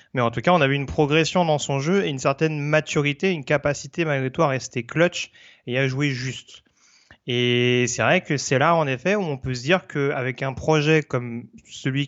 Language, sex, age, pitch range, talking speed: French, male, 30-49, 120-150 Hz, 225 wpm